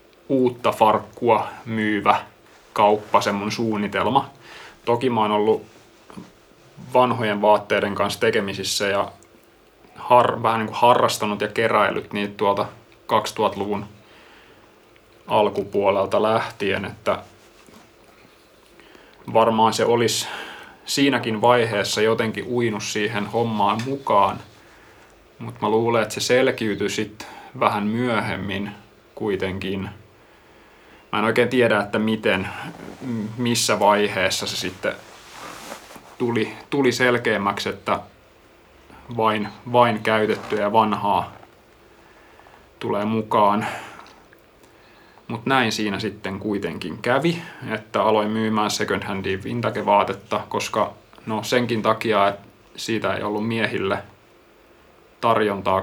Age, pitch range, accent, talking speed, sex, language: 30-49, 105-115 Hz, native, 100 wpm, male, Finnish